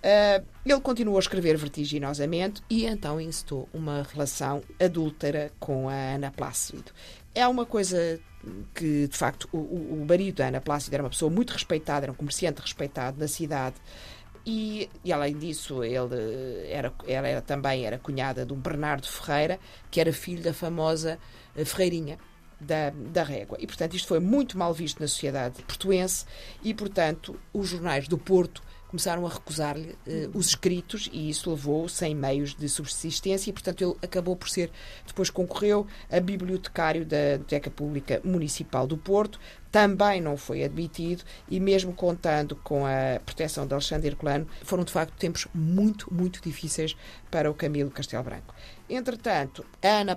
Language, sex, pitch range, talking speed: Portuguese, female, 145-180 Hz, 160 wpm